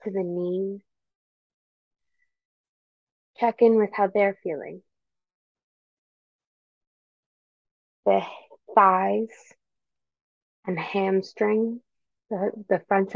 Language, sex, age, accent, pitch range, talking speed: English, female, 20-39, American, 180-220 Hz, 75 wpm